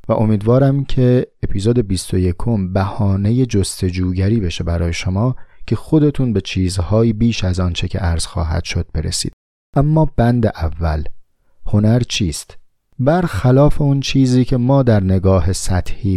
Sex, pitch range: male, 95-120 Hz